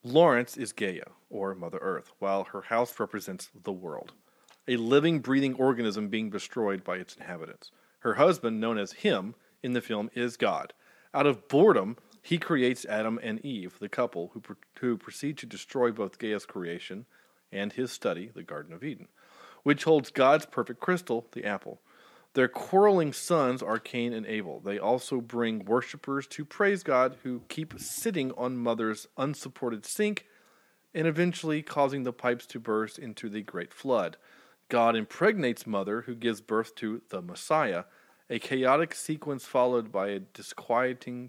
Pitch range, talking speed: 110-135 Hz, 160 wpm